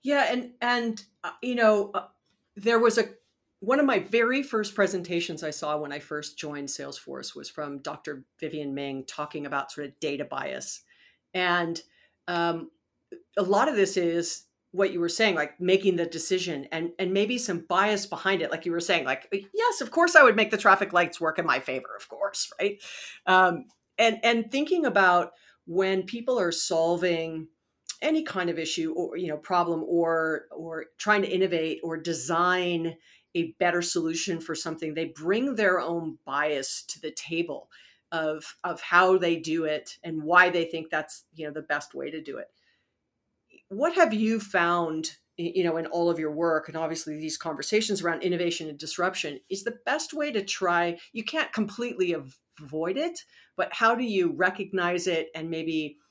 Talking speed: 185 wpm